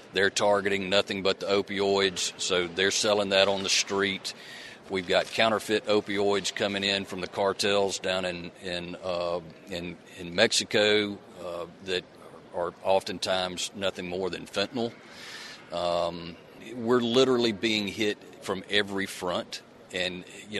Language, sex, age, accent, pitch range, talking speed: English, male, 40-59, American, 90-105 Hz, 135 wpm